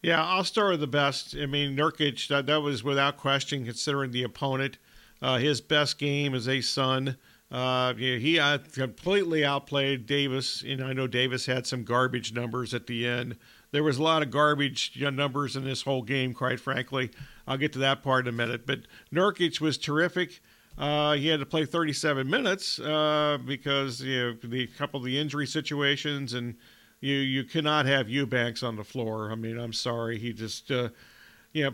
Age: 50-69